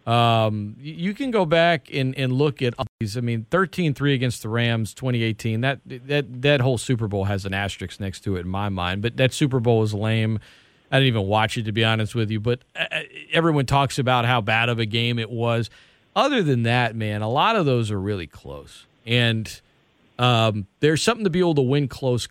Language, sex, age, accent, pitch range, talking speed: English, male, 40-59, American, 110-145 Hz, 220 wpm